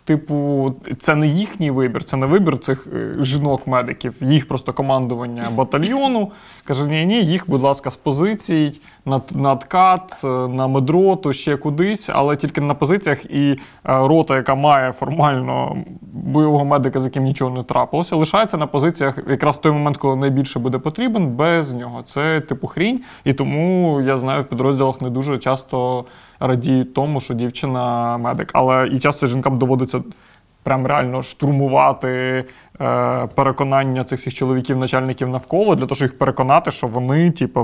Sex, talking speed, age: male, 150 wpm, 20-39